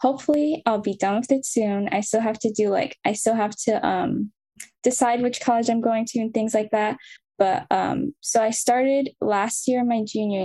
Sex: female